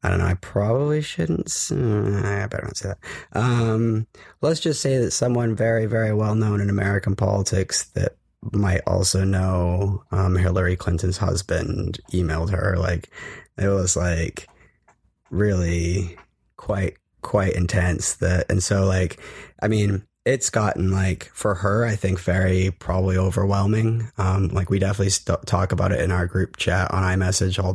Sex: male